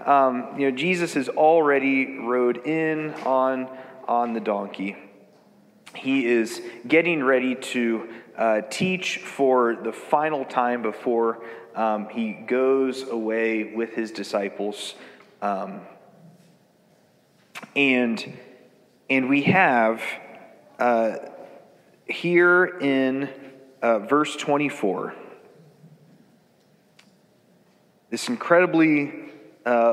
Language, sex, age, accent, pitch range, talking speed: English, male, 30-49, American, 115-150 Hz, 90 wpm